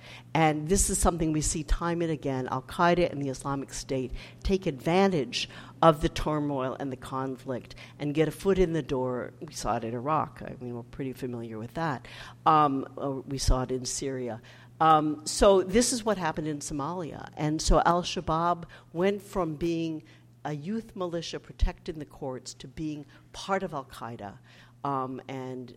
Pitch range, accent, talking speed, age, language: 125-160 Hz, American, 180 wpm, 60-79, English